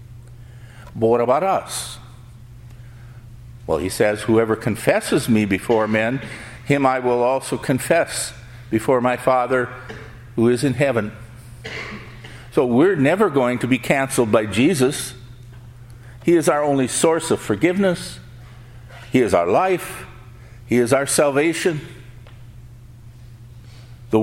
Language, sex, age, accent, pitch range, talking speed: English, male, 50-69, American, 120-130 Hz, 120 wpm